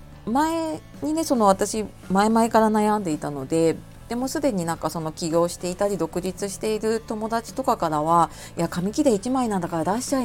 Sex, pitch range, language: female, 160-230 Hz, Japanese